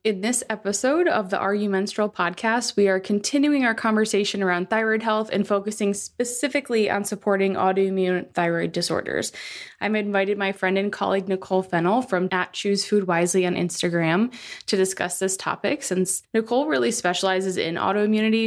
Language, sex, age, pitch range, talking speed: English, female, 20-39, 185-215 Hz, 160 wpm